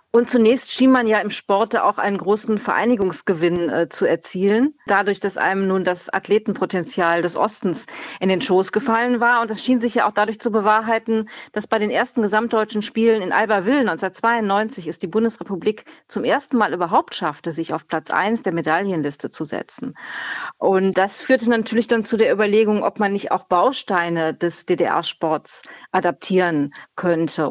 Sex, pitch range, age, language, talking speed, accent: female, 180-225 Hz, 40-59, German, 170 wpm, German